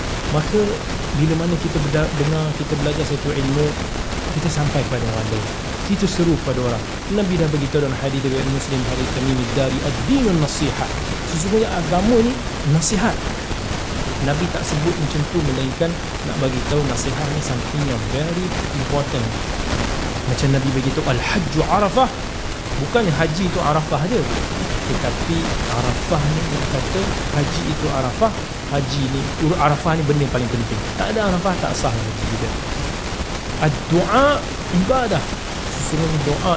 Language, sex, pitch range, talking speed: Malay, male, 130-155 Hz, 135 wpm